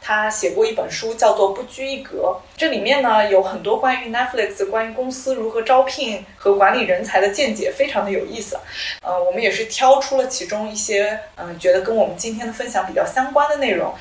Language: Chinese